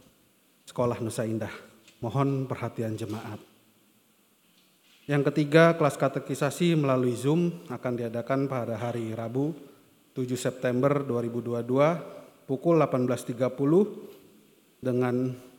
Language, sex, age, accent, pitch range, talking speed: Indonesian, male, 30-49, native, 120-140 Hz, 90 wpm